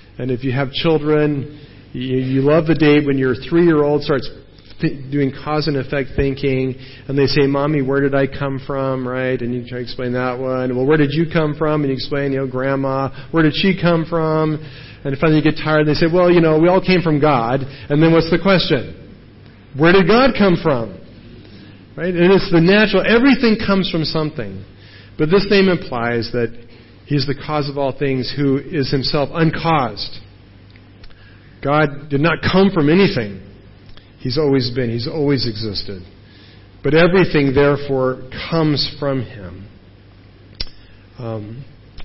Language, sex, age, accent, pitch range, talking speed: English, male, 40-59, American, 120-155 Hz, 175 wpm